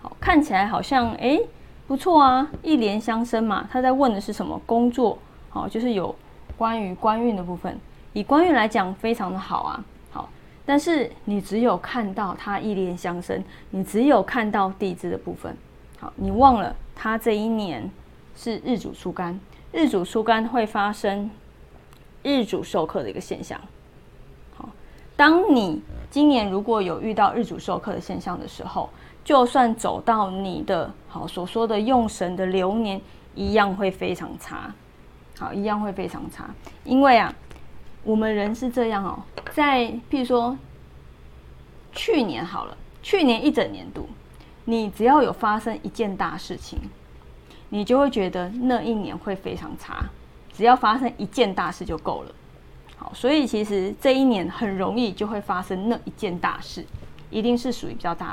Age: 20-39